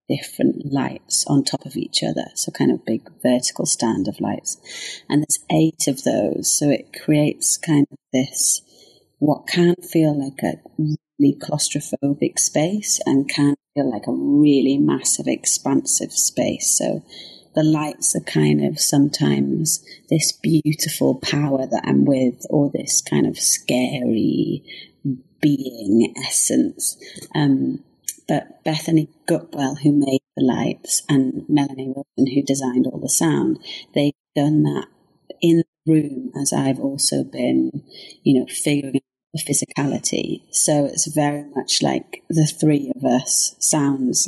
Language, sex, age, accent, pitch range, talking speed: English, female, 30-49, British, 135-155 Hz, 140 wpm